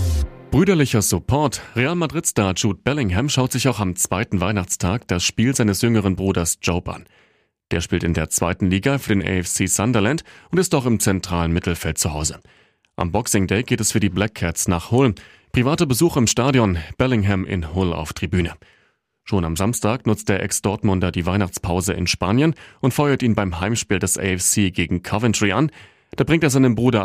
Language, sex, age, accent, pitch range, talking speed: German, male, 30-49, German, 95-125 Hz, 180 wpm